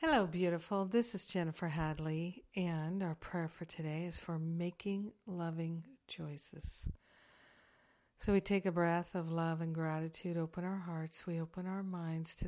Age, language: 60-79, English